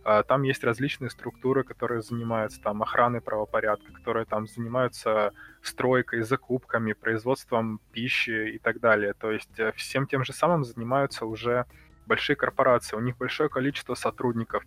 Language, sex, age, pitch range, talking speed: Russian, male, 20-39, 110-130 Hz, 130 wpm